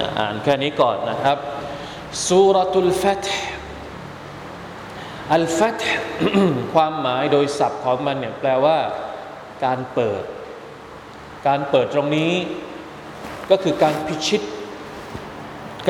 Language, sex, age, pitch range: Thai, male, 20-39, 135-170 Hz